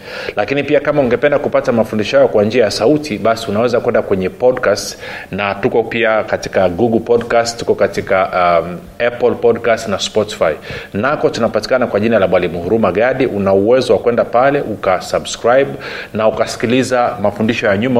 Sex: male